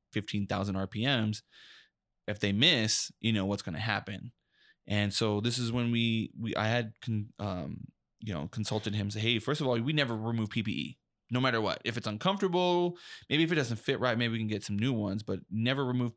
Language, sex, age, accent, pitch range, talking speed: English, male, 20-39, American, 105-125 Hz, 210 wpm